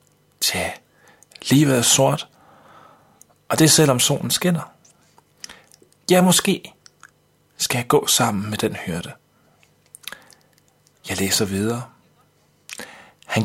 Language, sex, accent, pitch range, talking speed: Danish, male, native, 110-155 Hz, 110 wpm